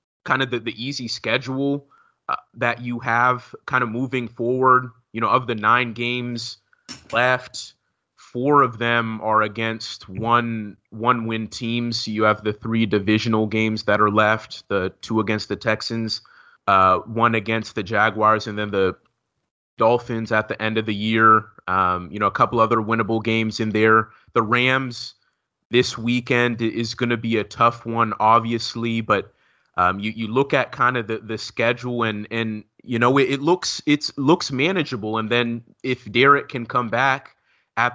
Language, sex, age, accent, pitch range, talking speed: English, male, 30-49, American, 110-130 Hz, 175 wpm